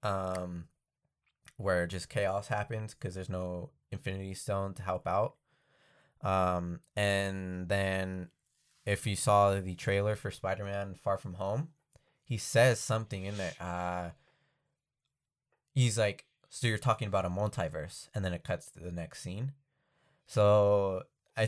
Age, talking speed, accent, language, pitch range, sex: 20-39, 140 wpm, American, English, 90-125 Hz, male